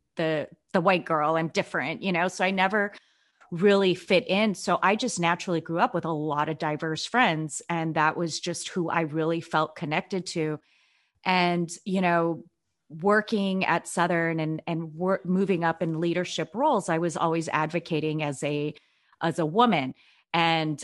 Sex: female